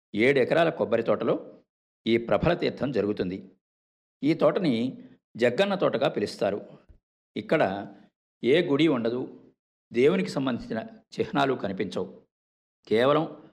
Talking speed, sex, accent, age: 100 wpm, male, native, 50-69